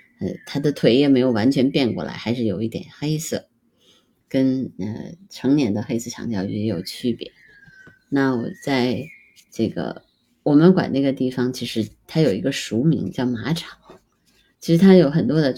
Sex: female